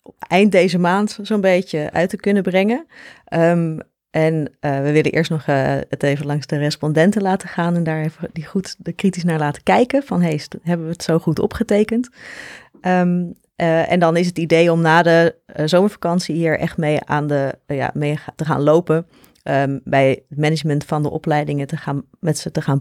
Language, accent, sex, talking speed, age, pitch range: Dutch, Dutch, female, 210 wpm, 30-49, 150-185 Hz